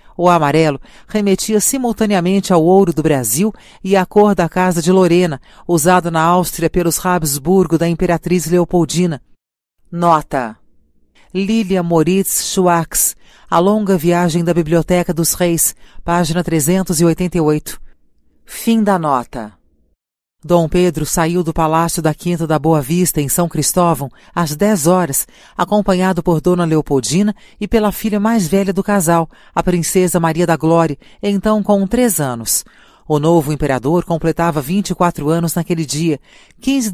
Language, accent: Portuguese, Brazilian